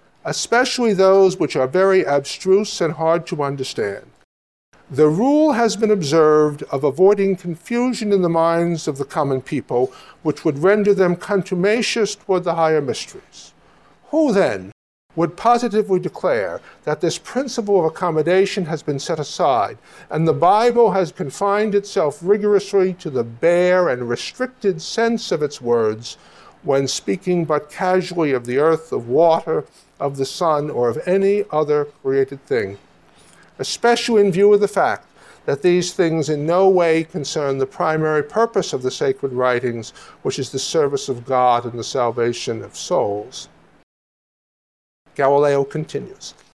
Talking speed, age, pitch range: 150 wpm, 60-79, 145-200 Hz